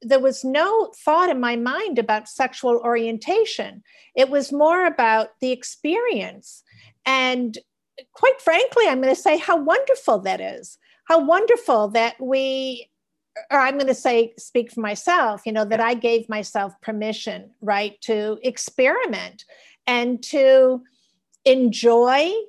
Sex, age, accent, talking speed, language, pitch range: female, 50-69, American, 135 wpm, English, 215-270 Hz